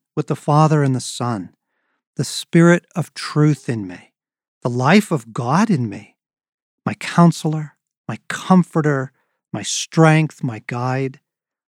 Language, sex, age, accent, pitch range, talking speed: English, male, 50-69, American, 130-165 Hz, 135 wpm